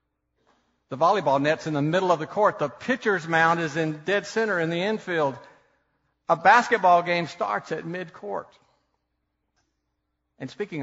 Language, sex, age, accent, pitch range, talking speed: English, male, 50-69, American, 135-200 Hz, 150 wpm